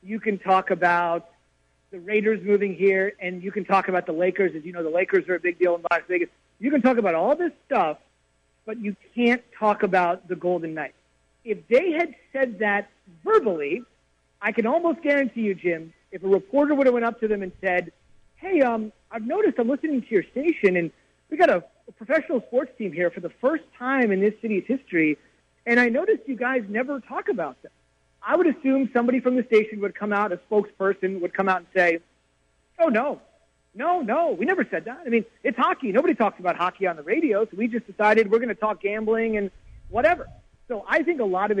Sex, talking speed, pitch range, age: male, 220 wpm, 185-245 Hz, 40-59